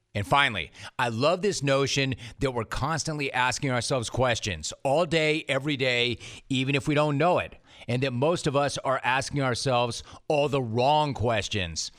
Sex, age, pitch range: male, 40-59, 115-150 Hz